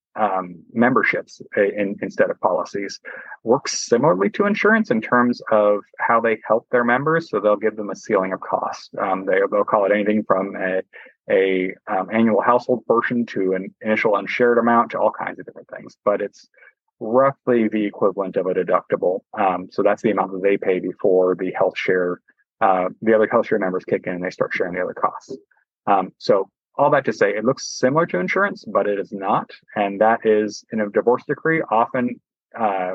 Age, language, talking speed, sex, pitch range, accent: 30-49, English, 200 wpm, male, 100-120 Hz, American